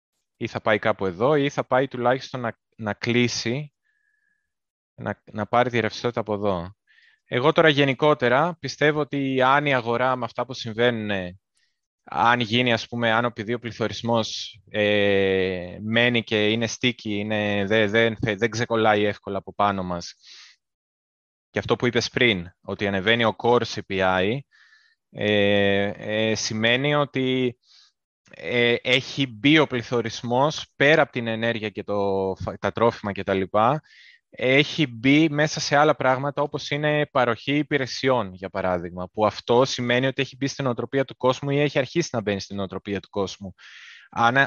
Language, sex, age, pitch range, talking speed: Greek, male, 20-39, 105-135 Hz, 155 wpm